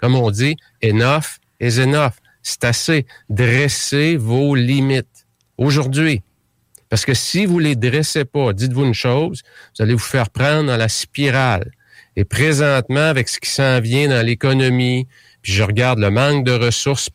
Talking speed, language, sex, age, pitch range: 160 wpm, English, male, 50-69, 110-135 Hz